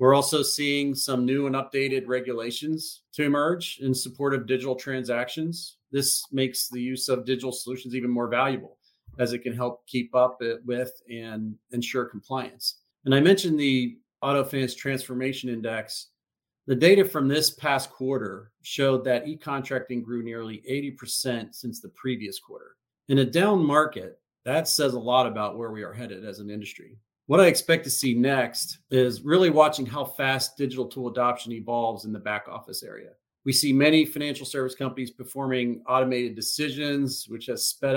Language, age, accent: English, 40-59, American